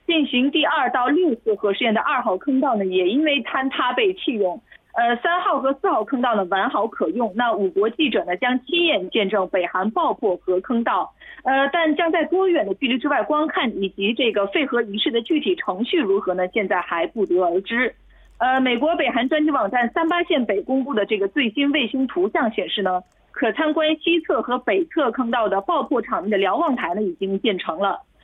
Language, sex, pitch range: Korean, female, 215-315 Hz